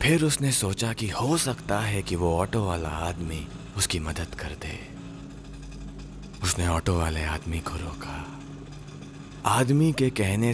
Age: 30-49